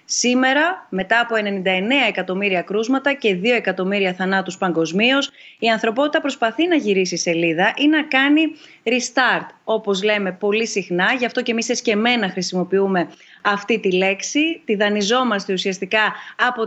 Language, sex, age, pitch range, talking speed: Greek, female, 30-49, 185-245 Hz, 140 wpm